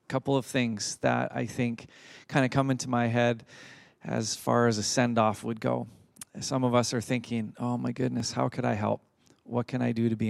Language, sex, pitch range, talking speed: English, male, 115-130 Hz, 220 wpm